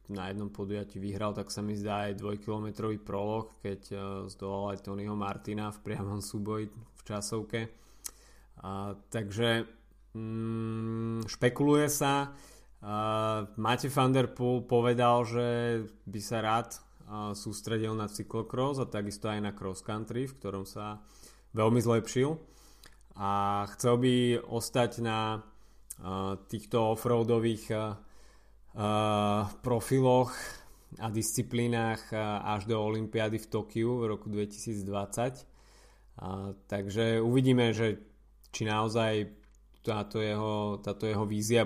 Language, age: Slovak, 20-39